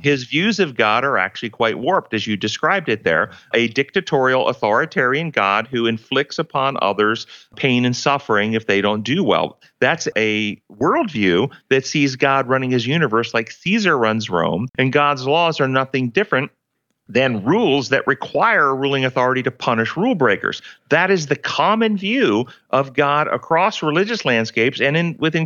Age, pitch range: 40-59, 120-160 Hz